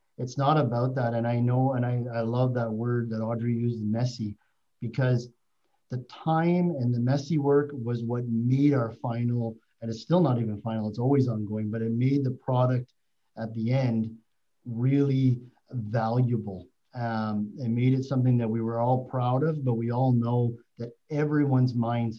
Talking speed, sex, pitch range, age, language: 180 wpm, male, 115-135 Hz, 40-59, English